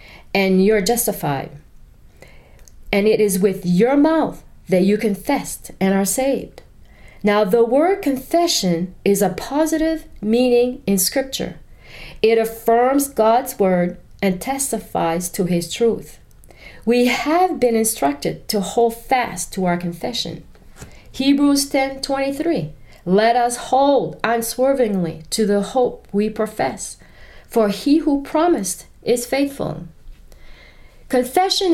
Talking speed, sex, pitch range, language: 120 wpm, female, 185-260 Hz, English